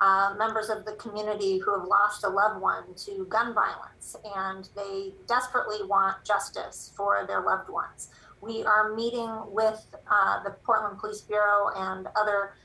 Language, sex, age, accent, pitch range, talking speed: English, female, 30-49, American, 205-225 Hz, 160 wpm